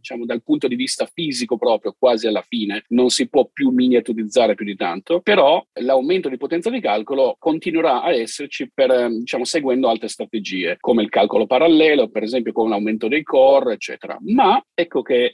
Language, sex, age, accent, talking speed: Italian, male, 40-59, native, 180 wpm